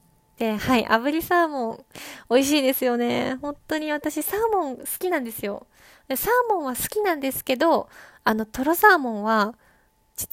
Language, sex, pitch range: Japanese, female, 220-285 Hz